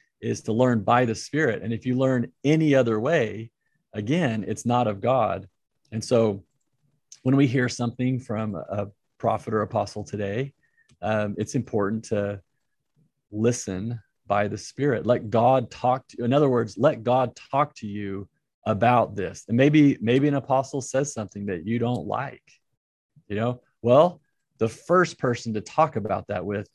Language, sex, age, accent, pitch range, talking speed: English, male, 30-49, American, 105-135 Hz, 170 wpm